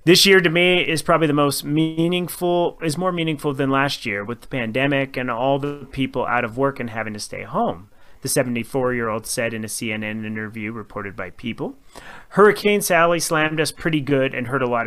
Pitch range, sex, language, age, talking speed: 125-160 Hz, male, English, 30-49, 200 wpm